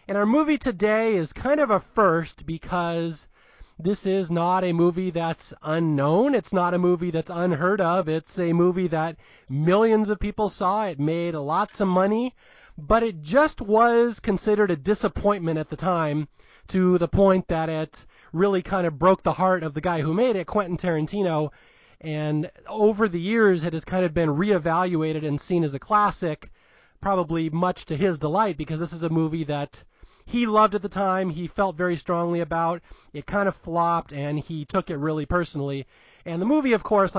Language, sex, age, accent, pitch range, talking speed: English, male, 30-49, American, 160-195 Hz, 190 wpm